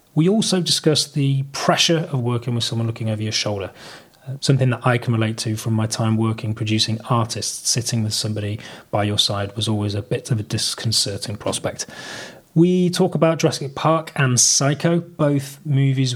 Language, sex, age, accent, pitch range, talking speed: English, male, 30-49, British, 115-155 Hz, 180 wpm